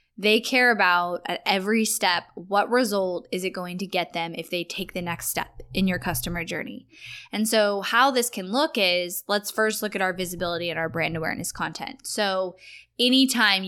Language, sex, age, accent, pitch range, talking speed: English, female, 10-29, American, 180-220 Hz, 195 wpm